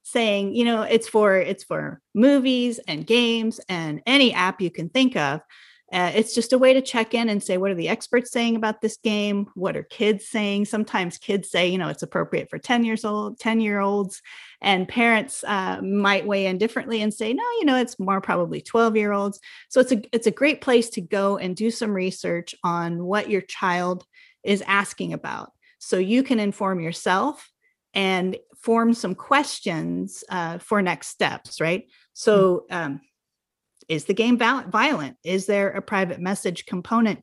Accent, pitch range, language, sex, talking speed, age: American, 180-230 Hz, English, female, 190 wpm, 30-49